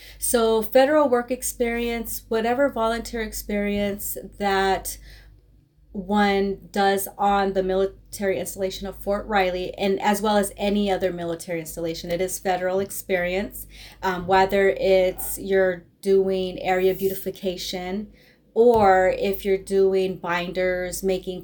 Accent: American